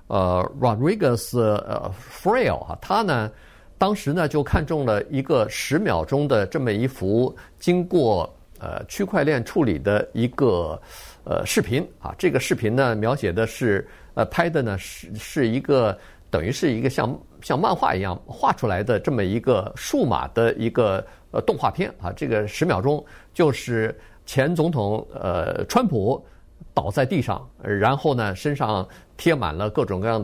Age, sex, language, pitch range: 50-69, male, Chinese, 105-150 Hz